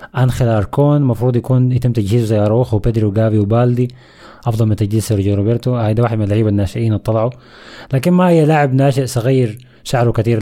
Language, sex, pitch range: Arabic, male, 105-130 Hz